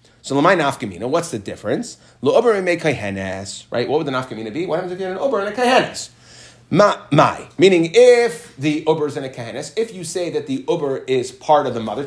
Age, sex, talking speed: 30-49, male, 220 wpm